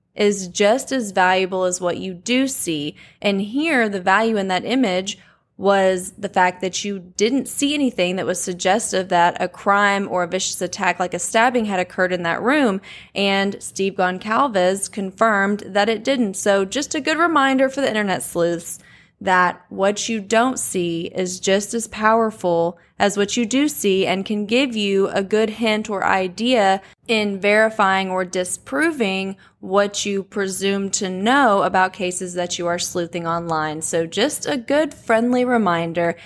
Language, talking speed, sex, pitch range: English, 170 wpm, female, 180-220 Hz